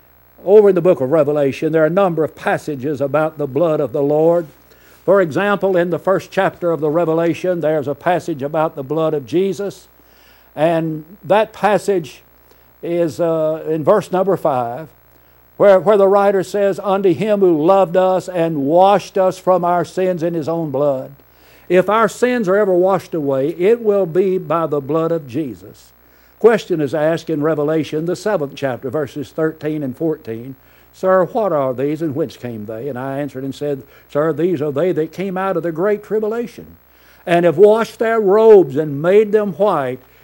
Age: 60-79